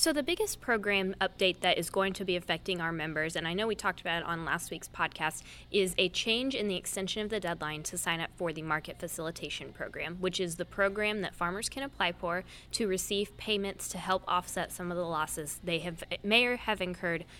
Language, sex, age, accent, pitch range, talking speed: English, female, 10-29, American, 170-205 Hz, 230 wpm